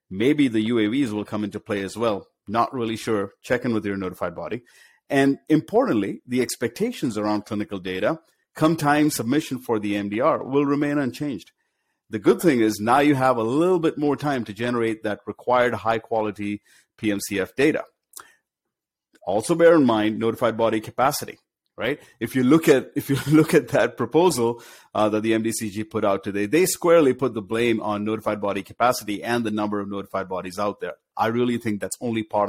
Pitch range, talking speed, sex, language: 105-135 Hz, 190 wpm, male, English